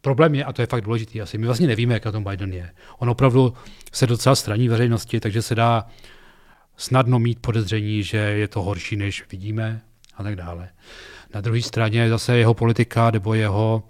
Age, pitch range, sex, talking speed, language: 40-59, 110-125 Hz, male, 190 wpm, Czech